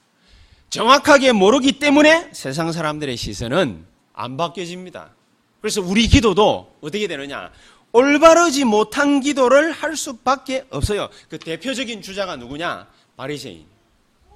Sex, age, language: male, 30-49, Korean